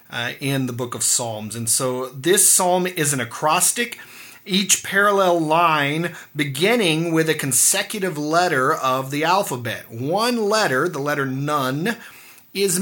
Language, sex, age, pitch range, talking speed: English, male, 30-49, 130-180 Hz, 140 wpm